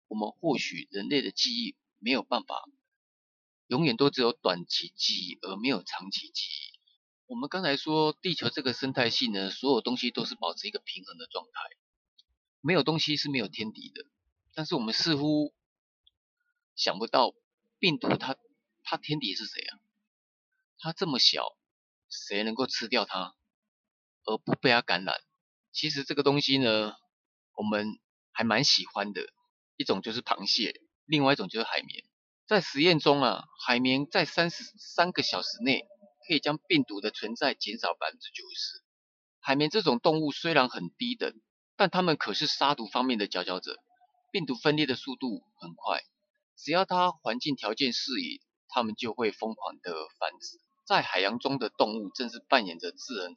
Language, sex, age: Chinese, male, 30-49